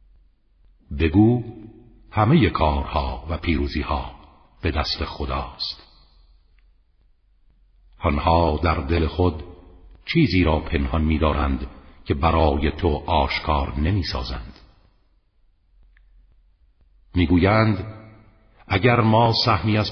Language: Persian